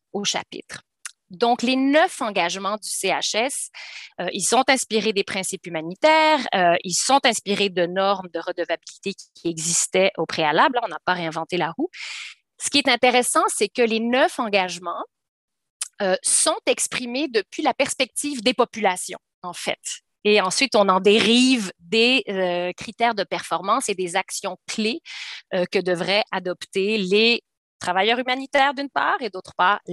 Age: 30-49